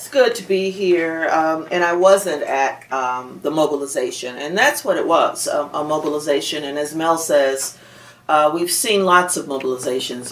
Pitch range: 130-150 Hz